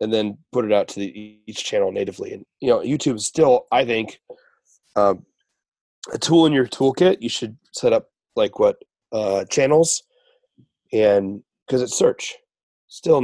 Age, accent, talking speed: 30-49, American, 170 wpm